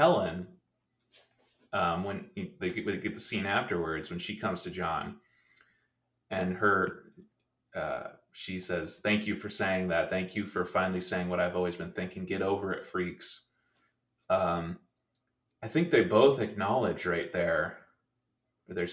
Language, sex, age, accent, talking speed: English, male, 20-39, American, 150 wpm